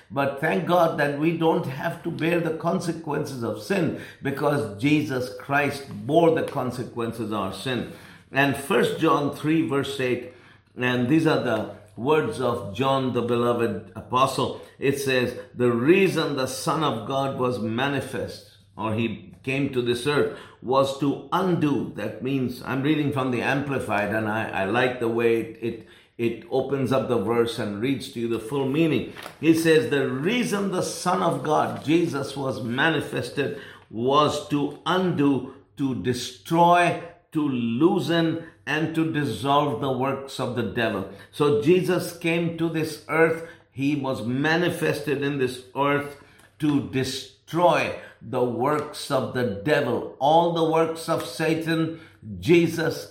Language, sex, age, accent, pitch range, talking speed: English, male, 50-69, Indian, 125-160 Hz, 155 wpm